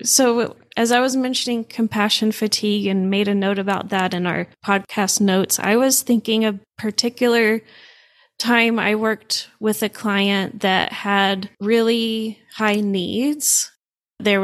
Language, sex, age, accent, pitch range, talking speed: English, female, 20-39, American, 195-225 Hz, 140 wpm